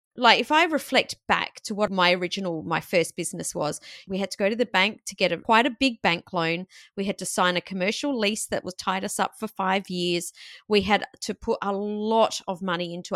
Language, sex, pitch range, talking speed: English, female, 185-240 Hz, 235 wpm